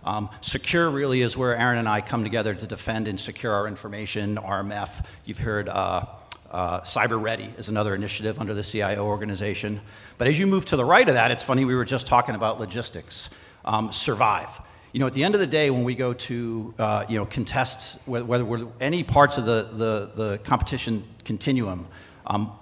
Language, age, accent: English, 50-69, American